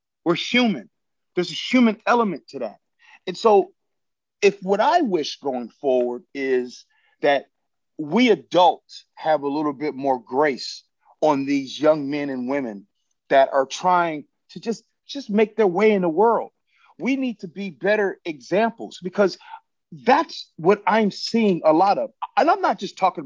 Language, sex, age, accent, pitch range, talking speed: English, male, 40-59, American, 165-240 Hz, 165 wpm